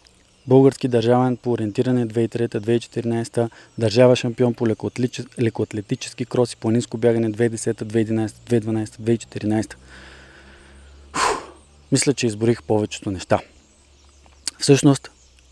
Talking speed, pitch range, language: 80 wpm, 105-125 Hz, Bulgarian